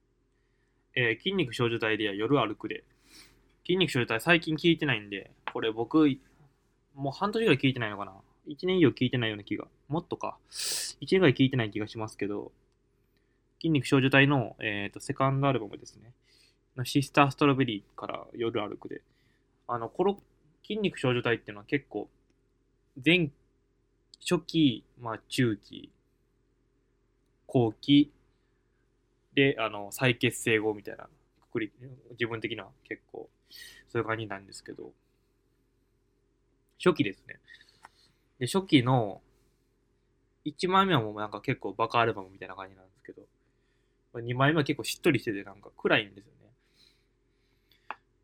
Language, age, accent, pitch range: Japanese, 20-39, native, 115-135 Hz